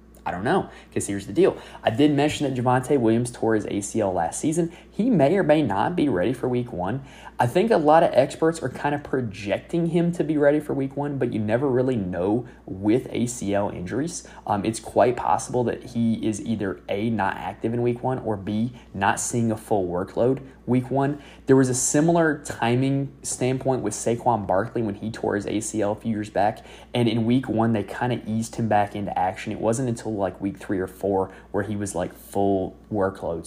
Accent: American